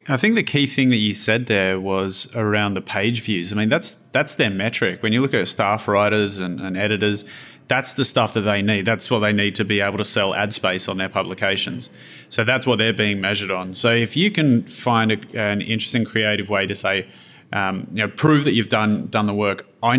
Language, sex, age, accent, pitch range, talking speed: English, male, 30-49, Australian, 95-115 Hz, 235 wpm